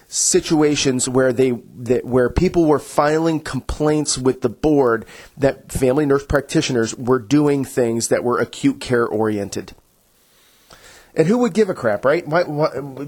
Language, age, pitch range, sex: English, 30-49, 125-160 Hz, male